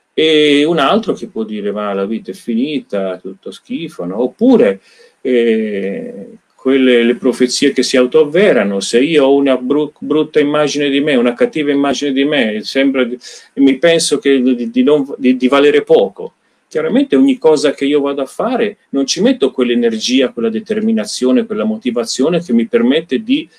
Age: 40-59